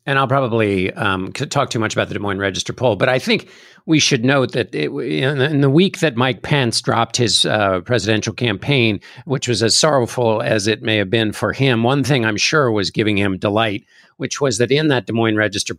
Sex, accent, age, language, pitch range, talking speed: male, American, 50-69, English, 115-145 Hz, 220 wpm